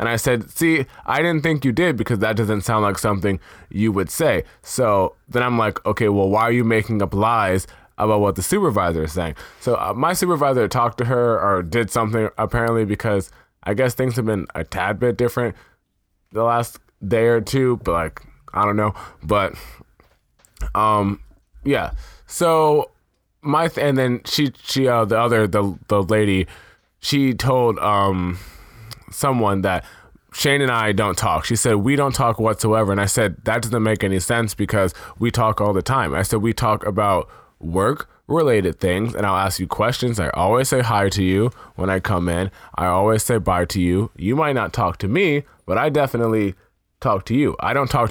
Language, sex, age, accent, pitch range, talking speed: English, male, 20-39, American, 100-120 Hz, 195 wpm